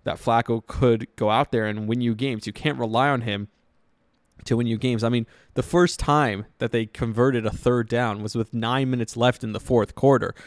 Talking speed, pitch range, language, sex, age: 225 wpm, 110-130 Hz, English, male, 20-39